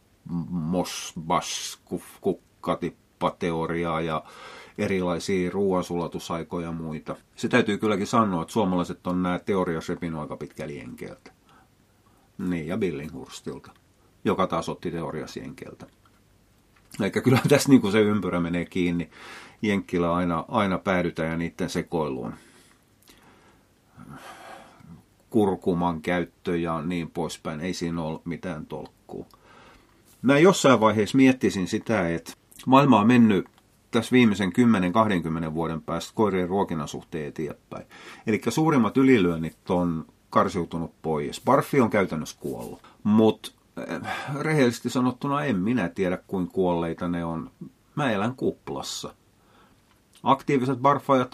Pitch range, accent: 85-110 Hz, native